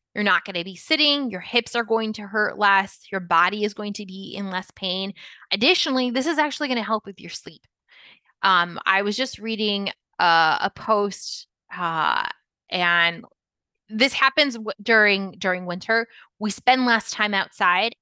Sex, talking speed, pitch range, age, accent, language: female, 175 wpm, 185-230 Hz, 20-39, American, English